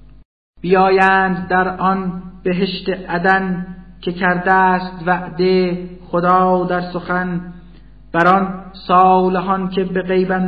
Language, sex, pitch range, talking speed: Persian, male, 175-185 Hz, 105 wpm